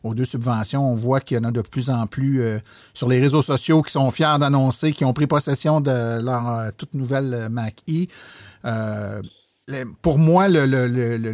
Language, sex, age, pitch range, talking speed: French, male, 50-69, 120-150 Hz, 195 wpm